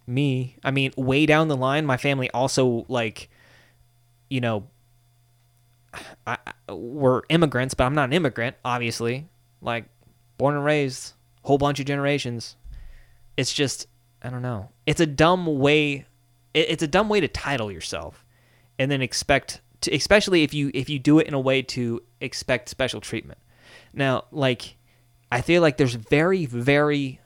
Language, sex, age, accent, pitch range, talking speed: English, male, 20-39, American, 120-140 Hz, 165 wpm